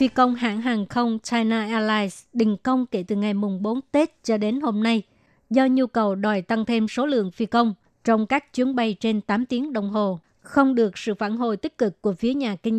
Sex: male